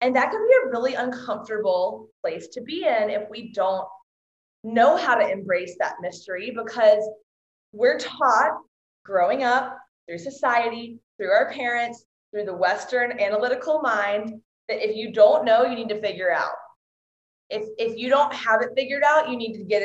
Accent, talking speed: American, 170 wpm